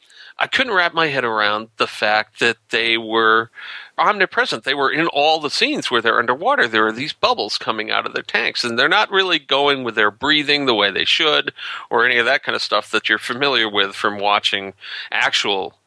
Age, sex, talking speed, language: 40-59, male, 210 wpm, English